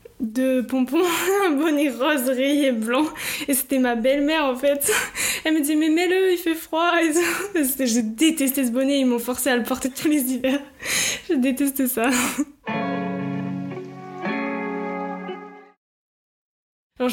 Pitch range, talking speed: 235-290 Hz, 135 wpm